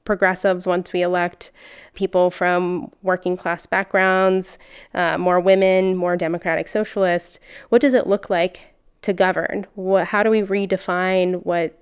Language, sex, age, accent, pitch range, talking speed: English, female, 20-39, American, 180-195 Hz, 140 wpm